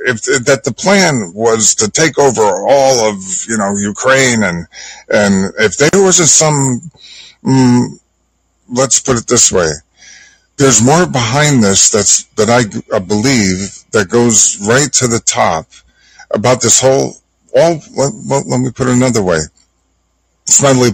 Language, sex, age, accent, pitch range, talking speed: English, male, 50-69, American, 95-130 Hz, 150 wpm